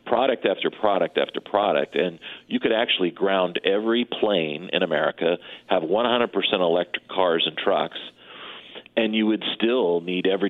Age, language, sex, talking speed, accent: 40-59, English, male, 150 wpm, American